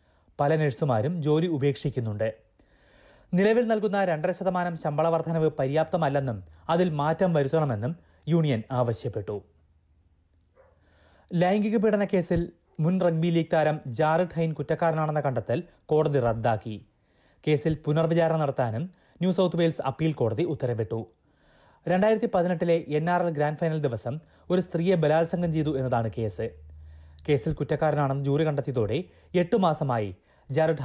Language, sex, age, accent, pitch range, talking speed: Malayalam, male, 30-49, native, 120-170 Hz, 110 wpm